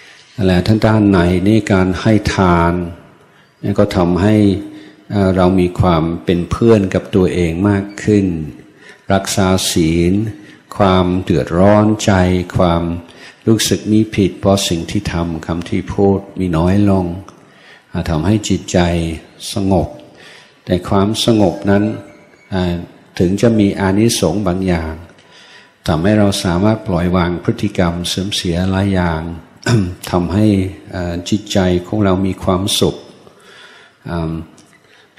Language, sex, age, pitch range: Thai, male, 60-79, 90-105 Hz